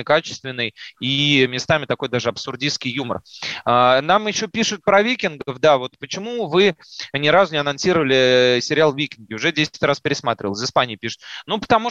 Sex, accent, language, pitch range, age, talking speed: male, native, Russian, 125-165 Hz, 30-49, 155 wpm